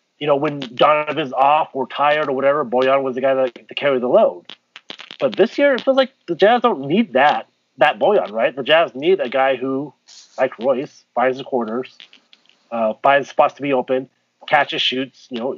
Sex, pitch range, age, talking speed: male, 130-165 Hz, 30-49, 200 wpm